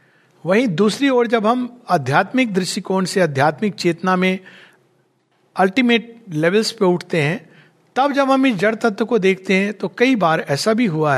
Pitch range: 155-210 Hz